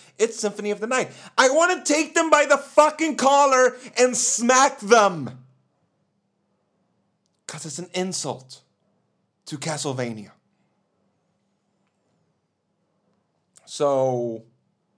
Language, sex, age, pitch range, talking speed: English, male, 30-49, 125-185 Hz, 95 wpm